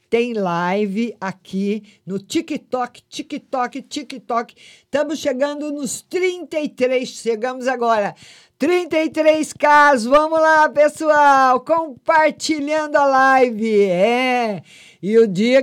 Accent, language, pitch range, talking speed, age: Brazilian, Portuguese, 190-260 Hz, 95 wpm, 50-69